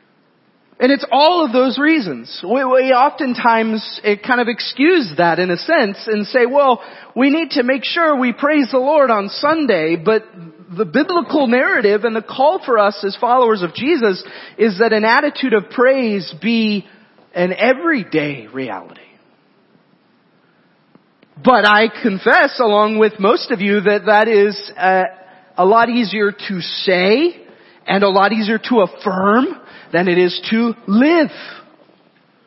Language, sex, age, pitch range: English, male, 30-49, 190-255 Hz